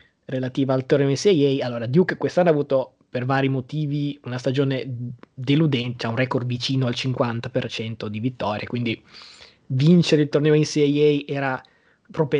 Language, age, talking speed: Italian, 20-39, 145 wpm